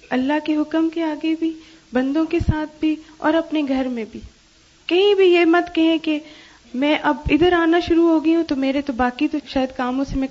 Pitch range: 270-320 Hz